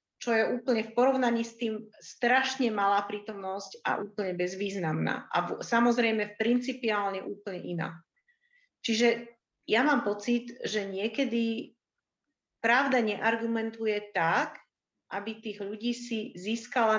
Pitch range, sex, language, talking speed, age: 200-245 Hz, female, Slovak, 115 wpm, 40-59